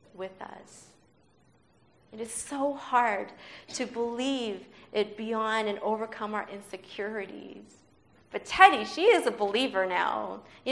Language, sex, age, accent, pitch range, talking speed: English, female, 30-49, American, 195-250 Hz, 125 wpm